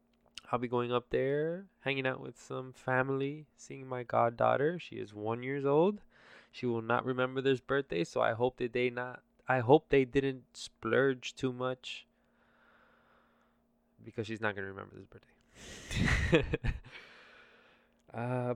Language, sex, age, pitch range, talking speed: English, male, 20-39, 110-130 Hz, 145 wpm